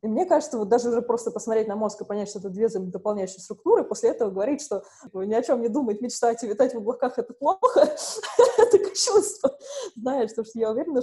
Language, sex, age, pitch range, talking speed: Russian, female, 20-39, 200-250 Hz, 220 wpm